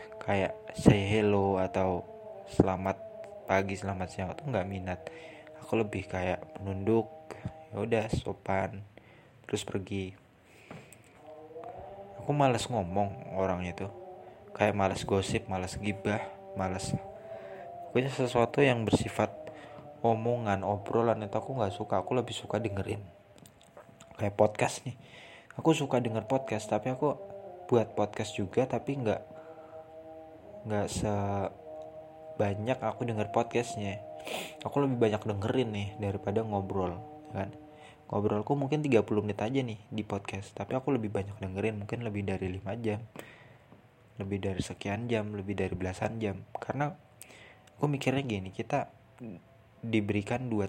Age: 20-39